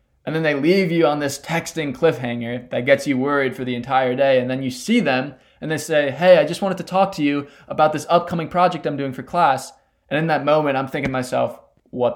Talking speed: 245 wpm